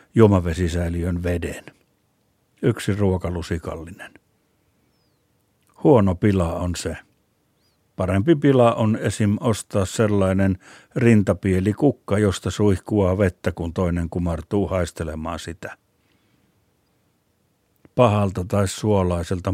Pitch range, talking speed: 90-115 Hz, 85 wpm